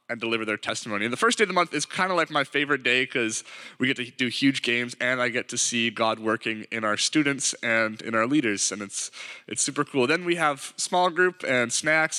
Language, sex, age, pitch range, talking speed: English, male, 20-39, 125-160 Hz, 250 wpm